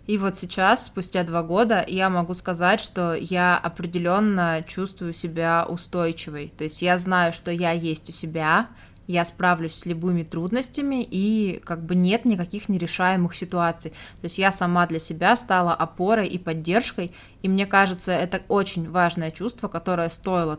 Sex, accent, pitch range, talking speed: female, native, 165-195 Hz, 160 wpm